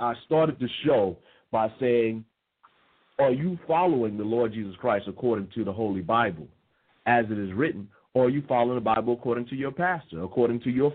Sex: male